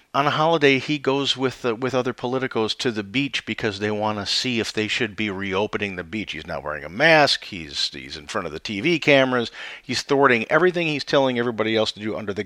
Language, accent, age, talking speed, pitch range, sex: English, American, 50-69, 235 wpm, 110-140 Hz, male